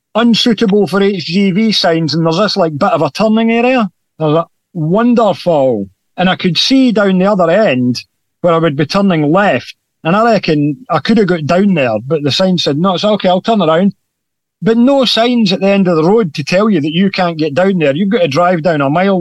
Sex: male